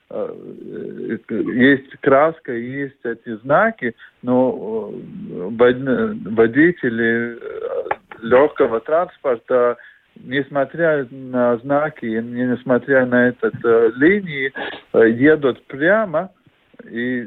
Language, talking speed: Russian, 70 wpm